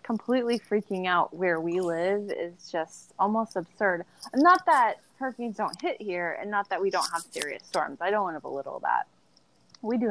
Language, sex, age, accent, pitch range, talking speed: English, female, 20-39, American, 150-195 Hz, 190 wpm